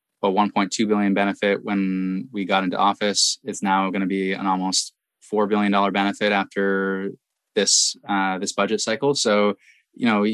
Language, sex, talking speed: English, male, 165 wpm